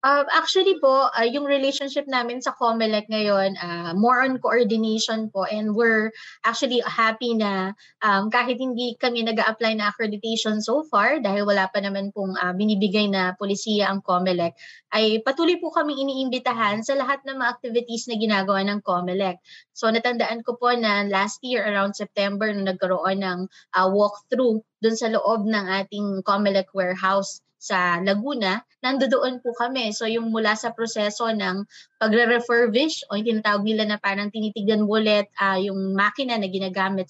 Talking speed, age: 165 wpm, 20-39